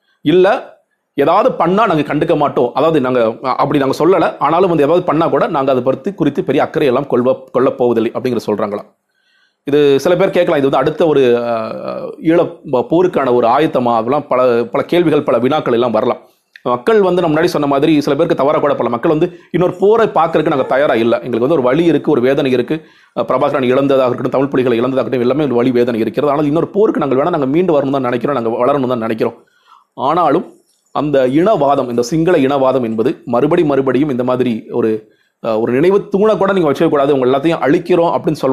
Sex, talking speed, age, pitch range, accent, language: male, 180 wpm, 40-59, 125-165 Hz, native, Tamil